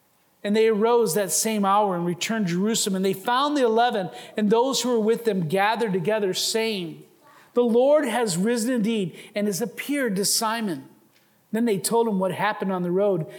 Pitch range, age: 190-245 Hz, 40-59